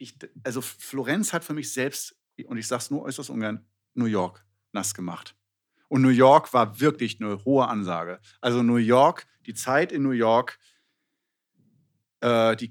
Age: 50-69